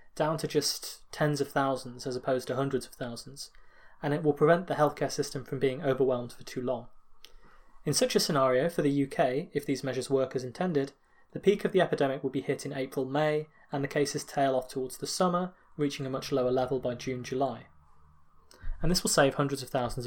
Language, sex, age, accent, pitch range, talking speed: English, male, 20-39, British, 130-165 Hz, 215 wpm